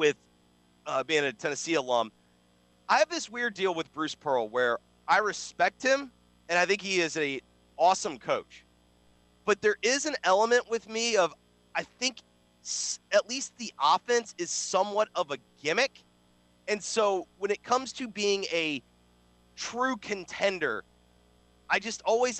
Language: English